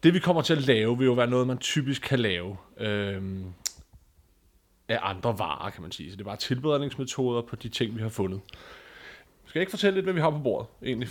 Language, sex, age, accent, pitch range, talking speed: Danish, male, 30-49, native, 110-135 Hz, 225 wpm